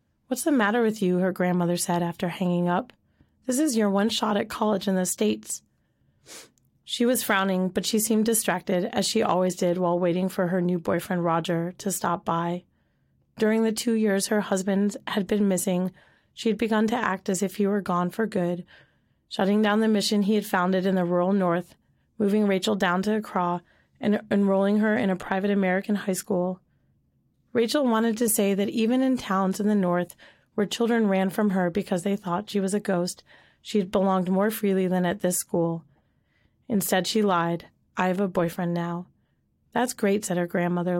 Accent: American